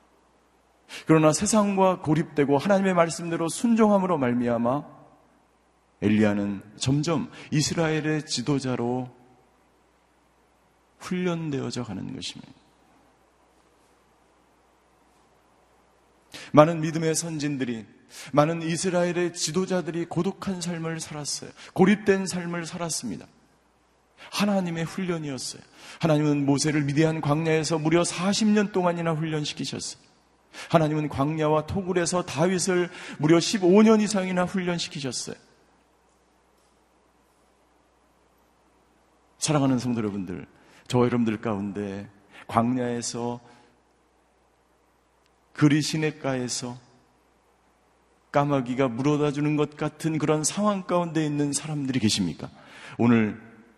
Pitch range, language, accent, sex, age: 125-175 Hz, Korean, native, male, 40-59